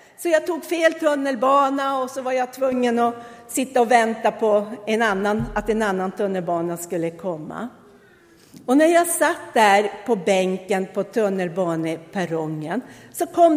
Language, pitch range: Swedish, 185-285 Hz